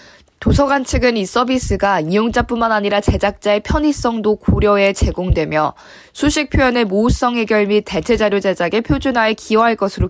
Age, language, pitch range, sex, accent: 20-39, Korean, 195-245 Hz, female, native